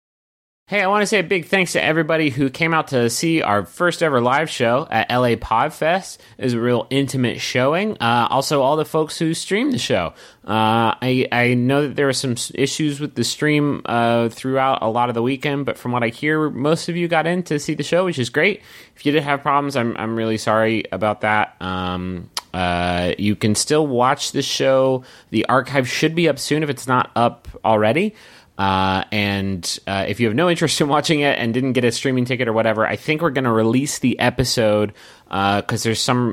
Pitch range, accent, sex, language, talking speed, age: 110-150 Hz, American, male, English, 225 wpm, 30-49